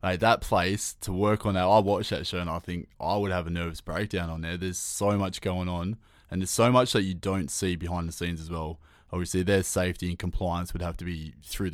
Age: 20-39